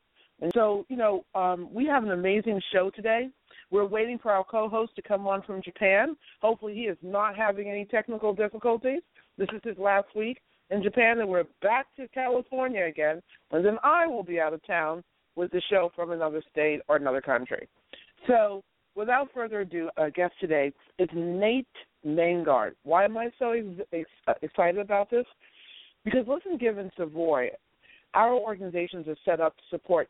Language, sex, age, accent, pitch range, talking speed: English, female, 50-69, American, 170-215 Hz, 175 wpm